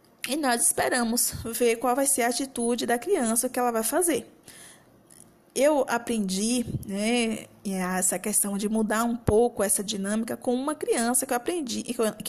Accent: Brazilian